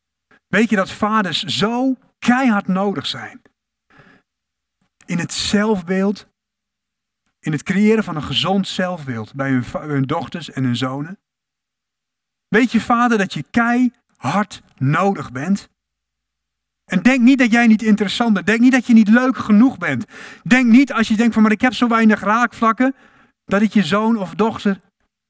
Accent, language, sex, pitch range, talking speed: Dutch, Dutch, male, 190-235 Hz, 155 wpm